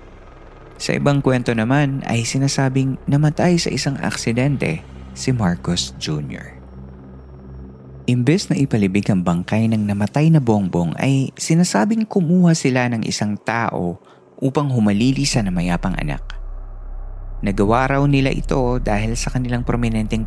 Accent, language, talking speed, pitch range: native, Filipino, 120 wpm, 90-135 Hz